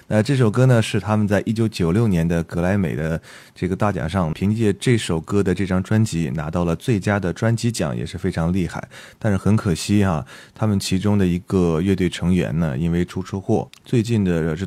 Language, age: Chinese, 20-39